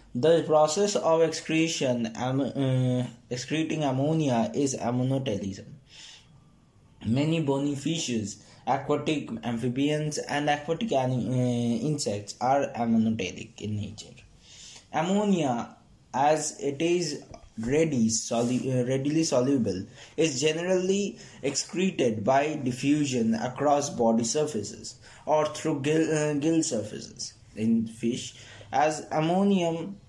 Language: English